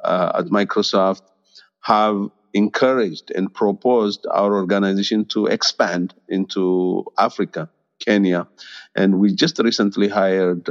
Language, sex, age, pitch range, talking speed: Amharic, male, 50-69, 105-145 Hz, 105 wpm